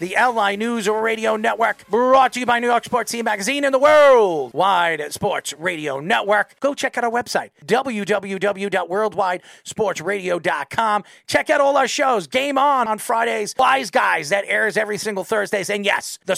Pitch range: 180-250 Hz